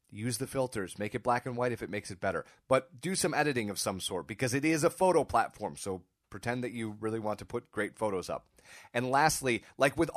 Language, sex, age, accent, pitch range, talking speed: English, male, 30-49, American, 120-155 Hz, 240 wpm